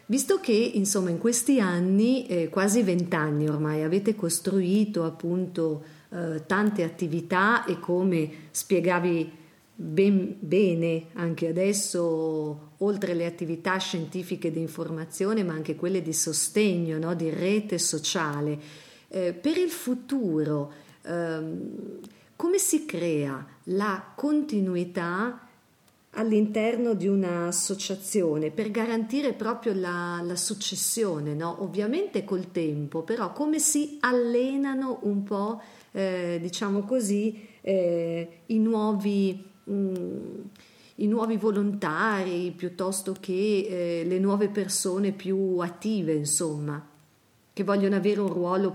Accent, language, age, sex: native, Italian, 50-69, female